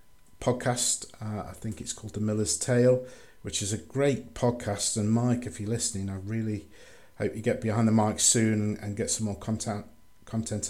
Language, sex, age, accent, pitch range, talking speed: English, male, 50-69, British, 100-120 Hz, 190 wpm